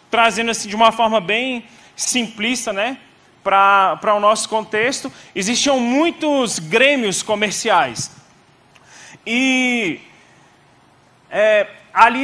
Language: Portuguese